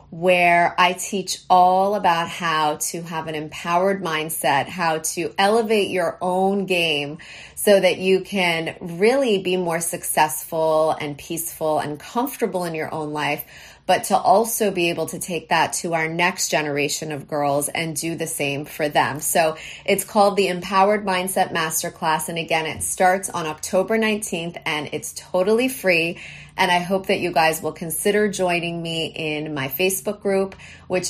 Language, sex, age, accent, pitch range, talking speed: English, female, 30-49, American, 160-190 Hz, 165 wpm